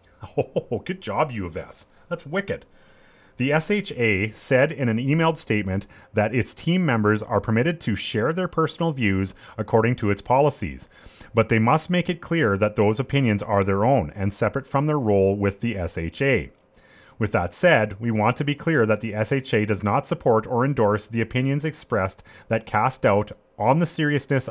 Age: 30-49